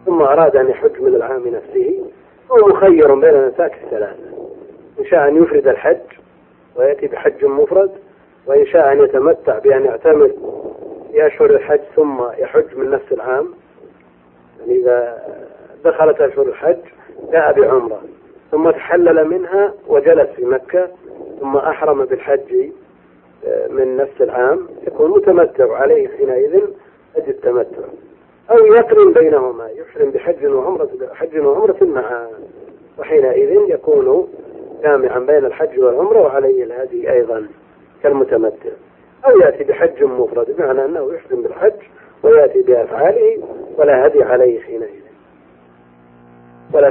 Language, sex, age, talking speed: Arabic, male, 40-59, 120 wpm